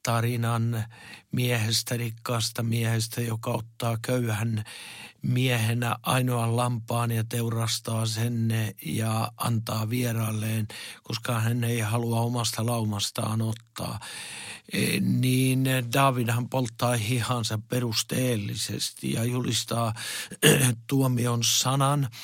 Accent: native